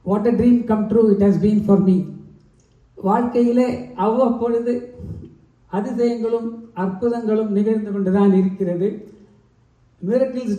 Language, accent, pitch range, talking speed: Tamil, native, 195-235 Hz, 115 wpm